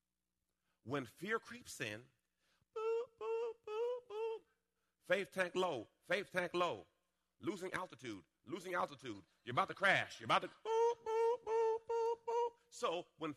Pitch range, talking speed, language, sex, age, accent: 100-155 Hz, 145 wpm, English, male, 40-59, American